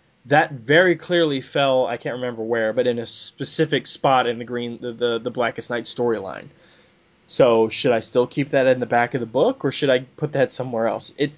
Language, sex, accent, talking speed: English, male, American, 220 wpm